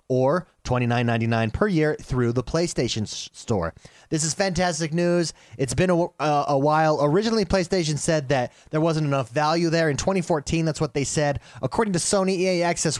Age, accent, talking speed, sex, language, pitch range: 30-49, American, 175 wpm, male, English, 120-165 Hz